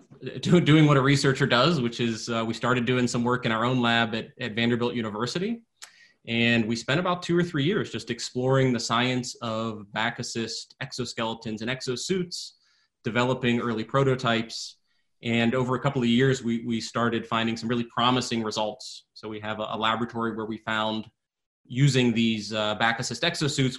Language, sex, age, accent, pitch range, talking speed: English, male, 30-49, American, 115-130 Hz, 180 wpm